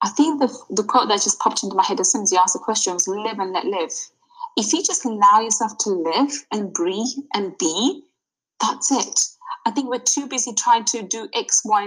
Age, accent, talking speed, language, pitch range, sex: 20-39, British, 235 wpm, English, 200-280 Hz, female